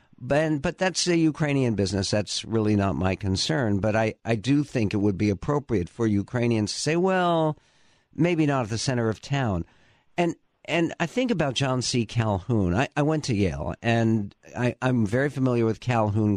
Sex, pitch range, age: male, 105-130 Hz, 50-69